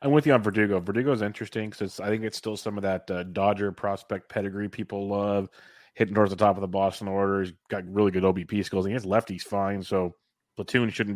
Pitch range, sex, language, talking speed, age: 95-105 Hz, male, English, 230 wpm, 30-49